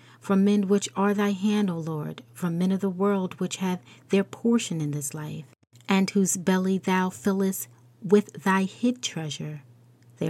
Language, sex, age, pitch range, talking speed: English, female, 40-59, 130-190 Hz, 175 wpm